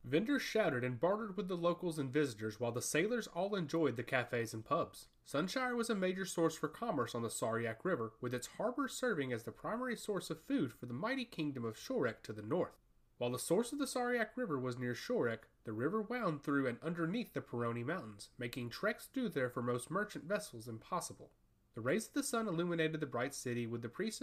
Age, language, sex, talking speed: 30-49, English, male, 220 wpm